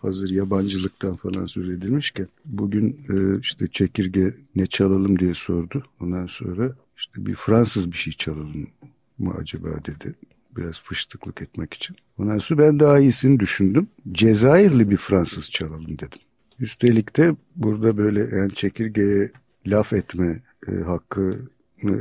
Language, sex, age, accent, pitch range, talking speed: Turkish, male, 50-69, native, 95-115 Hz, 130 wpm